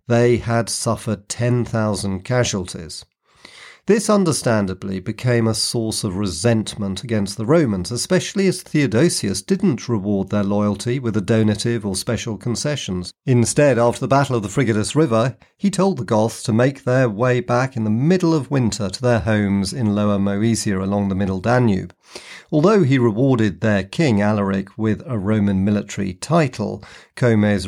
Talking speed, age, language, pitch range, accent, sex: 155 wpm, 40-59, English, 100-125 Hz, British, male